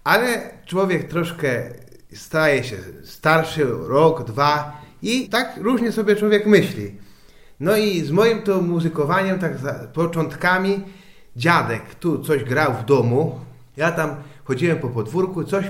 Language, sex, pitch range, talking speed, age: Polish, male, 135-170 Hz, 135 wpm, 30-49